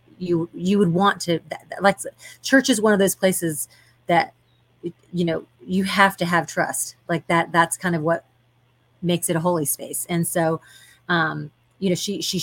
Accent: American